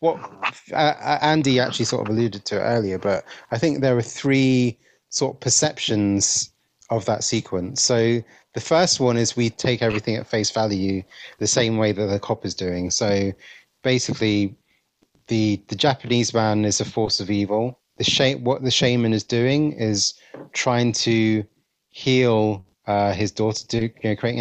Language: English